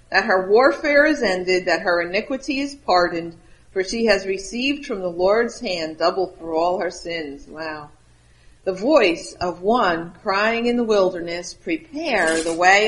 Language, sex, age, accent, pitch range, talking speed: English, female, 50-69, American, 175-235 Hz, 165 wpm